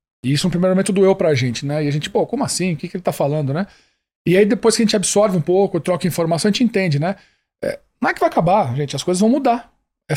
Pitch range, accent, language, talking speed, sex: 155-205 Hz, Brazilian, Portuguese, 295 wpm, male